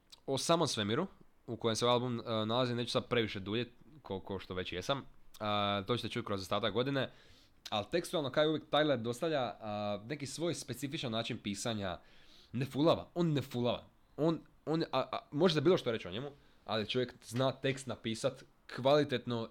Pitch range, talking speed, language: 105-135 Hz, 180 wpm, Croatian